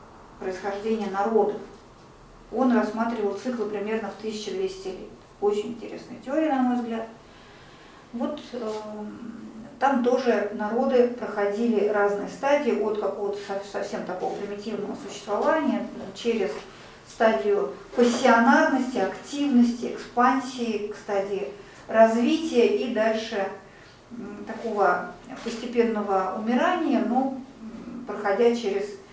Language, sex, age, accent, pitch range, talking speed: Russian, female, 50-69, native, 205-245 Hz, 90 wpm